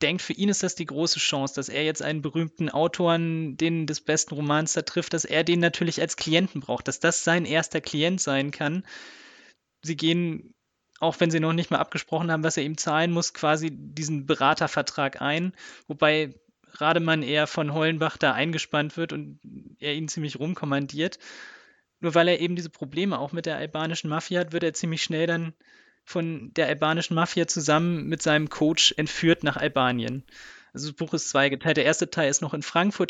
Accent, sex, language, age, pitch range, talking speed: German, male, German, 20-39, 150-170 Hz, 190 wpm